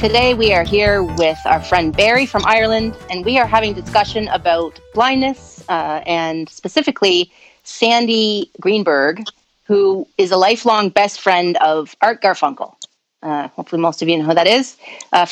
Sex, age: female, 30-49